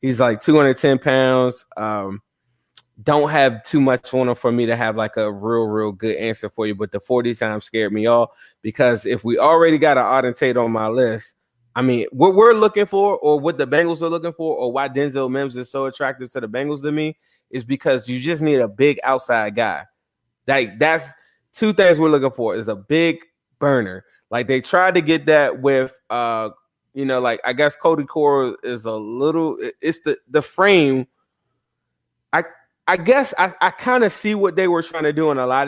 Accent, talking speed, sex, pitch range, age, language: American, 210 wpm, male, 120-155 Hz, 20-39, English